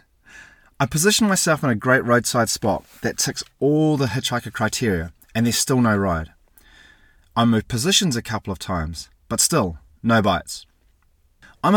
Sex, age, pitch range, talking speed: male, 30-49, 85-135 Hz, 160 wpm